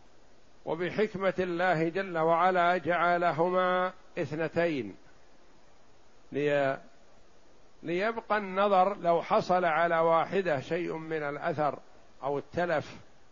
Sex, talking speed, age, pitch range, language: male, 75 wpm, 60-79, 155-195 Hz, Arabic